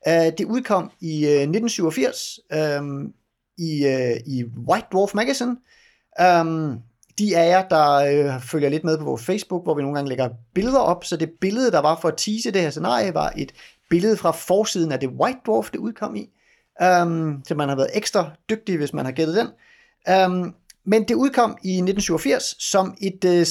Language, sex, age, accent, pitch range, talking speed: Danish, male, 30-49, native, 145-195 Hz, 190 wpm